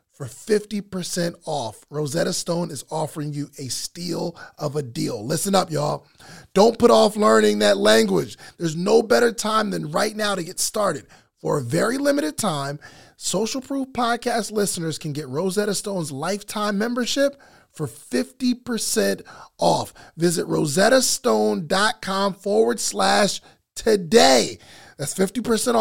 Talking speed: 130 wpm